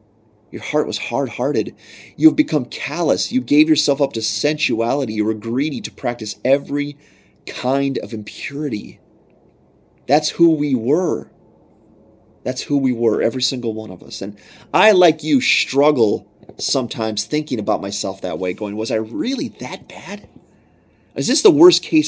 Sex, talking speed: male, 155 wpm